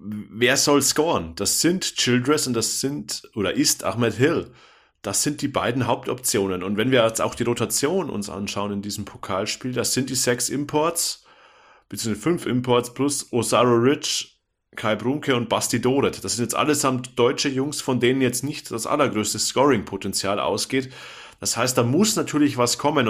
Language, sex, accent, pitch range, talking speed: German, male, German, 110-135 Hz, 175 wpm